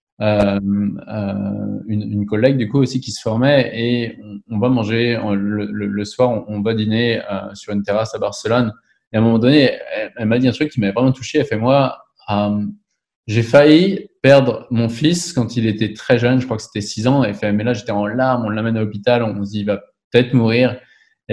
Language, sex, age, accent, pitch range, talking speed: French, male, 20-39, French, 110-135 Hz, 240 wpm